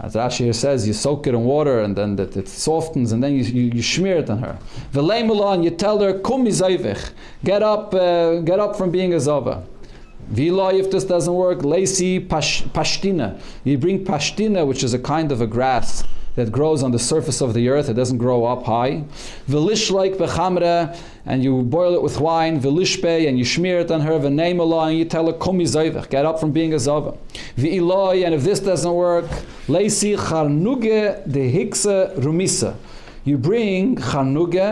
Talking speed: 180 wpm